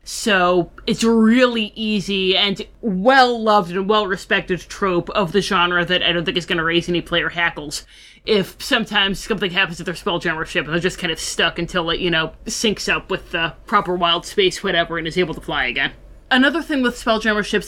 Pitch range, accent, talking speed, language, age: 175-210 Hz, American, 205 wpm, English, 20-39